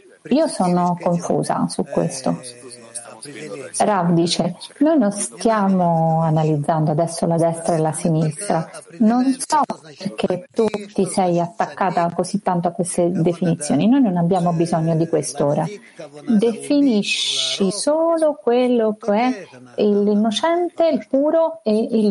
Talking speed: 120 wpm